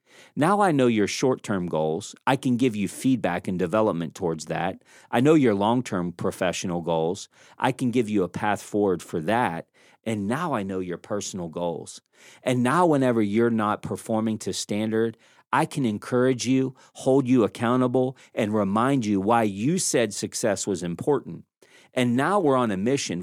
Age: 40-59